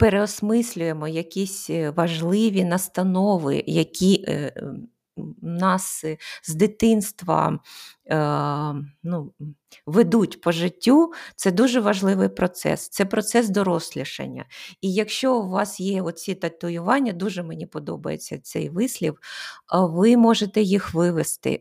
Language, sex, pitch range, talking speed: Ukrainian, female, 170-210 Hz, 105 wpm